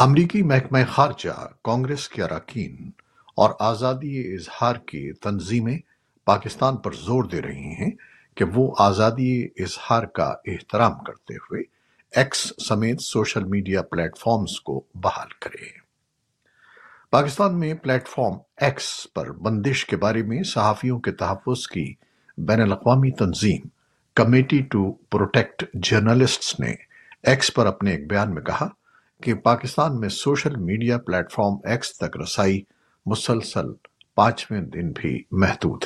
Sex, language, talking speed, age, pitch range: male, Urdu, 130 wpm, 60-79, 105-135 Hz